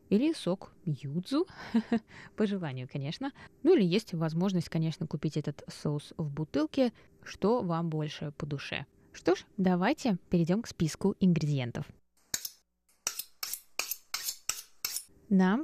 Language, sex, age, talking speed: Russian, female, 20-39, 110 wpm